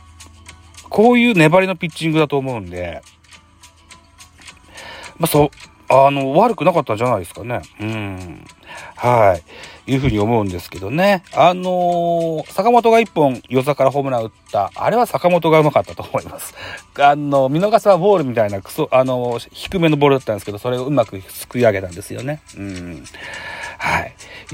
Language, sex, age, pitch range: Japanese, male, 40-59, 110-150 Hz